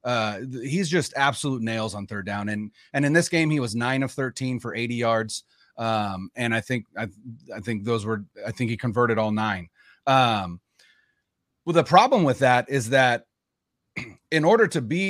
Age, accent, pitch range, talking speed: 30-49, American, 115-145 Hz, 190 wpm